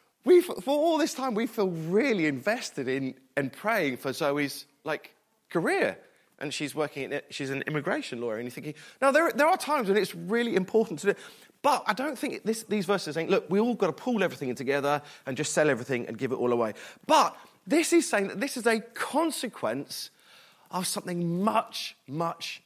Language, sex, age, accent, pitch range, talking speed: English, male, 30-49, British, 130-210 Hz, 205 wpm